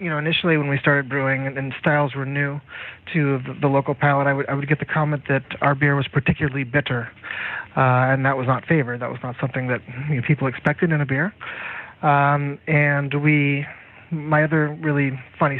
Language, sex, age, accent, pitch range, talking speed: English, male, 30-49, American, 130-160 Hz, 195 wpm